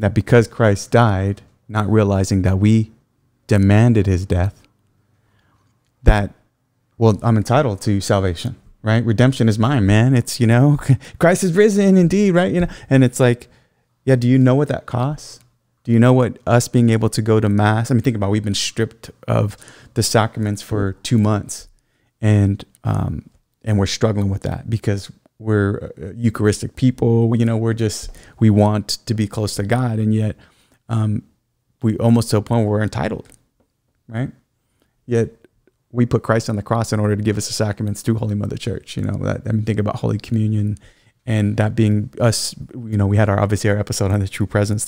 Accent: American